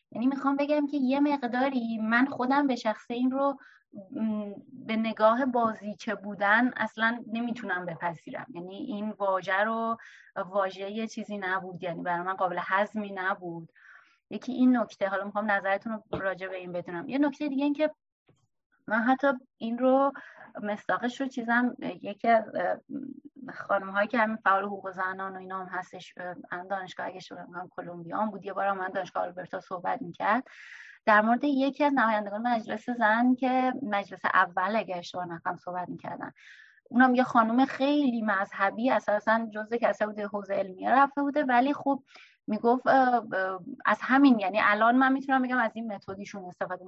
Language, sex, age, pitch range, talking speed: Persian, female, 20-39, 195-250 Hz, 160 wpm